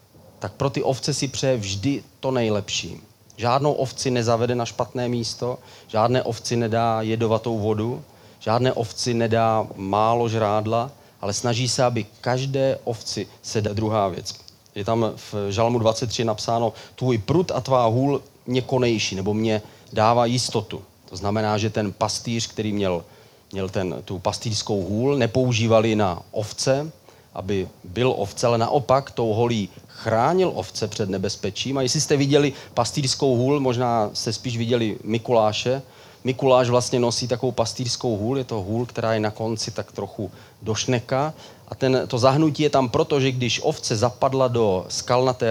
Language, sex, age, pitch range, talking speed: Czech, male, 30-49, 105-130 Hz, 155 wpm